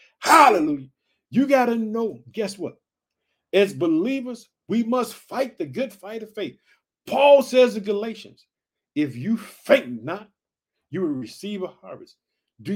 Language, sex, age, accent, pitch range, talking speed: English, male, 50-69, American, 195-240 Hz, 145 wpm